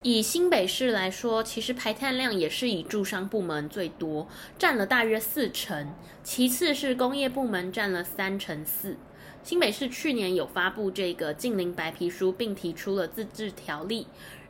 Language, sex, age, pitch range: Chinese, female, 20-39, 180-250 Hz